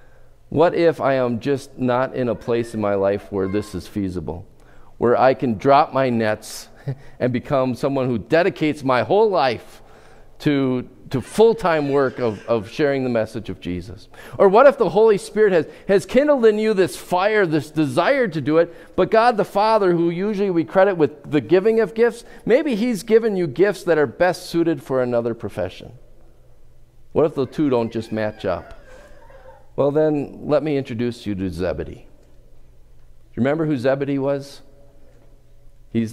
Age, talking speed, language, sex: 50-69, 180 wpm, English, male